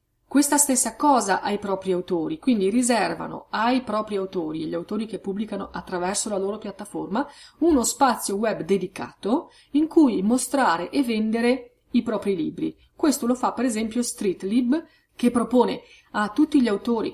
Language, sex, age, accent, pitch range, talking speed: Italian, female, 30-49, native, 195-260 Hz, 155 wpm